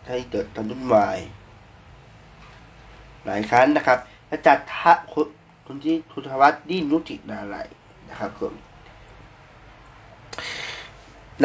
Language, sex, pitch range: Thai, male, 115-165 Hz